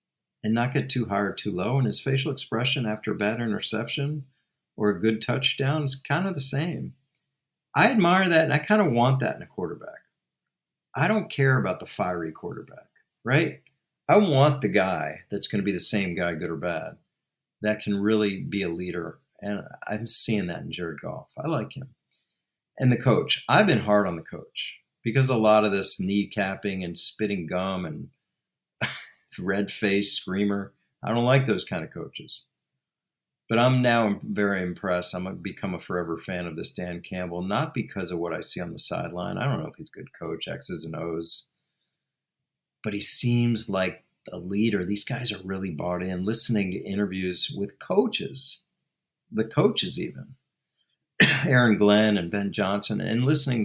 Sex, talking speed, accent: male, 185 wpm, American